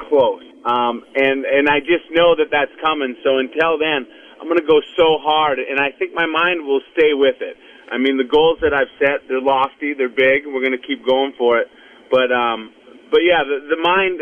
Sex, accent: male, American